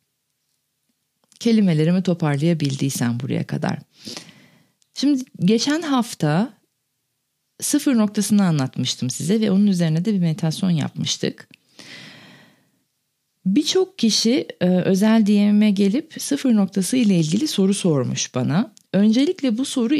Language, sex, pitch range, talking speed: Turkish, female, 170-240 Hz, 100 wpm